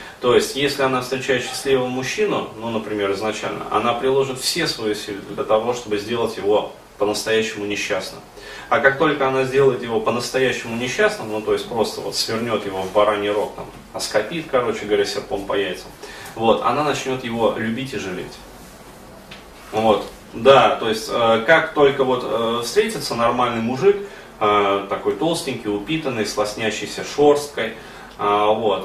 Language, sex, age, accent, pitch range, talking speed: Russian, male, 30-49, native, 105-130 Hz, 150 wpm